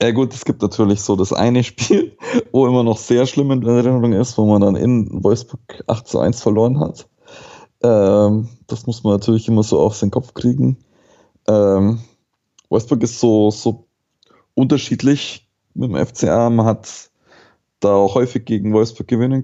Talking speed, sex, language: 170 wpm, male, German